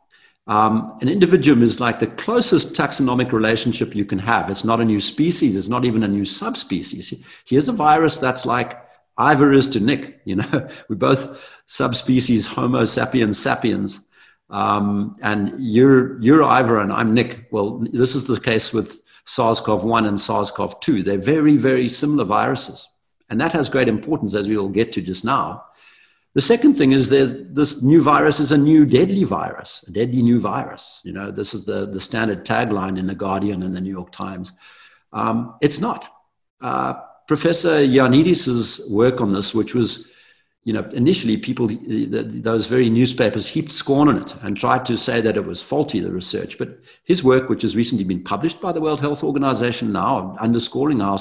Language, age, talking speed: English, 60-79, 180 wpm